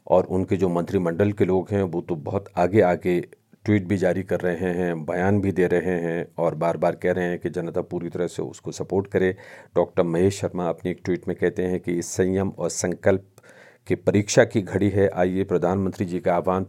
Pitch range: 90-110 Hz